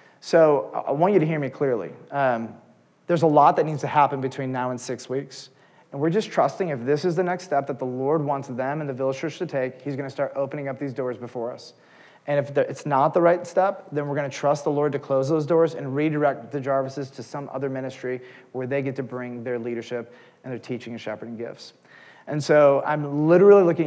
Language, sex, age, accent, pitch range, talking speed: English, male, 30-49, American, 130-150 Hz, 240 wpm